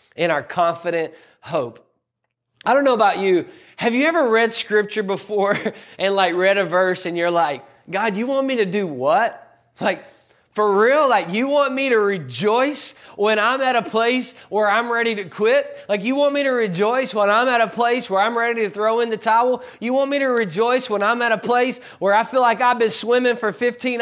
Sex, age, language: male, 20-39, English